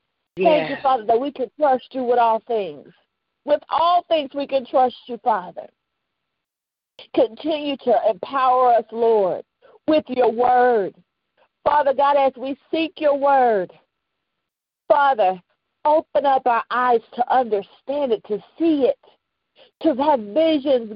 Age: 50-69